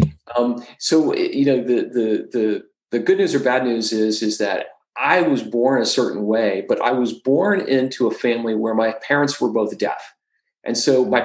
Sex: male